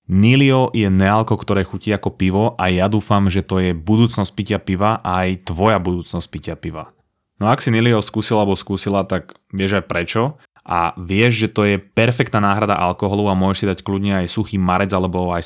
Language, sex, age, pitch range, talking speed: Slovak, male, 20-39, 95-120 Hz, 200 wpm